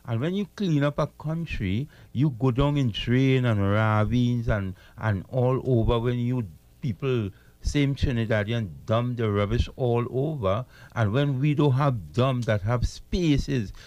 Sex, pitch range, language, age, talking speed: male, 115-150 Hz, English, 60-79, 160 wpm